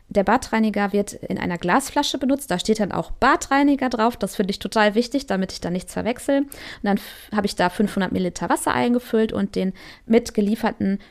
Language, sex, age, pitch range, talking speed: German, female, 20-39, 205-240 Hz, 195 wpm